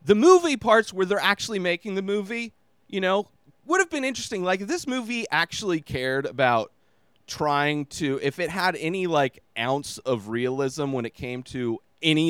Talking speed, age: 175 wpm, 30-49